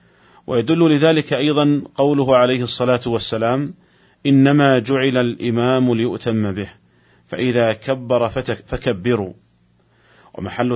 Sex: male